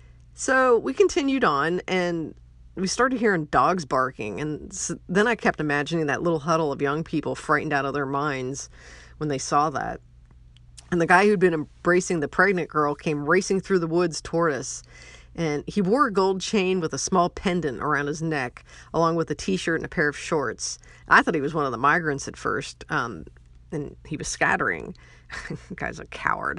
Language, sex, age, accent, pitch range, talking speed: English, female, 40-59, American, 140-185 Hz, 195 wpm